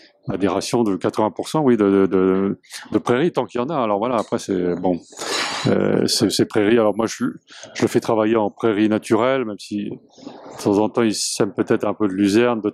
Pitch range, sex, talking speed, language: 105-130 Hz, male, 230 wpm, French